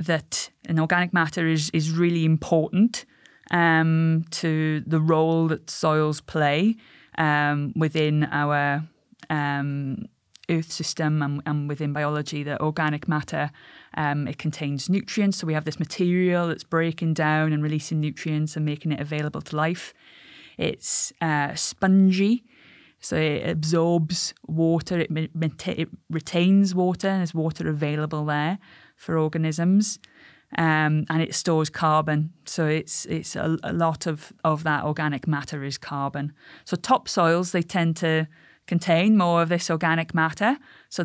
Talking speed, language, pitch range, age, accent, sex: 145 wpm, English, 155-170 Hz, 20-39, British, female